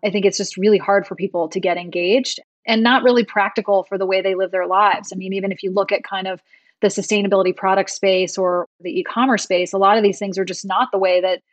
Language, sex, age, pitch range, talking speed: English, female, 30-49, 190-210 Hz, 260 wpm